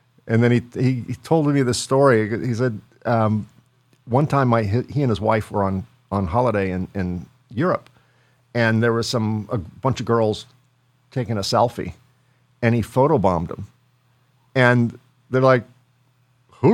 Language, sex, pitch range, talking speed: English, male, 110-135 Hz, 160 wpm